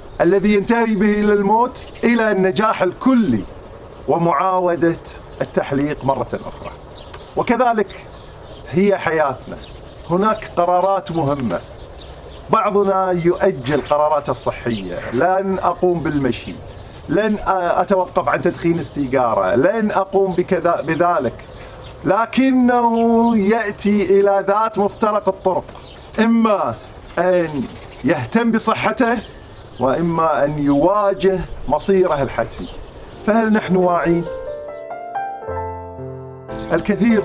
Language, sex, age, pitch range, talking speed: Arabic, male, 40-59, 130-195 Hz, 85 wpm